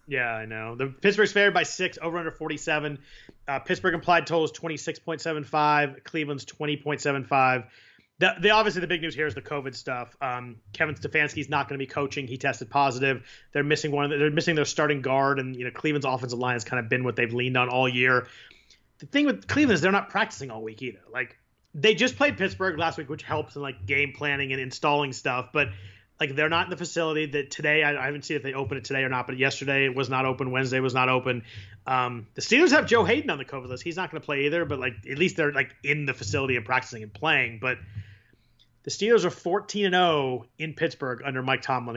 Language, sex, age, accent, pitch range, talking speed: English, male, 30-49, American, 130-155 Hz, 245 wpm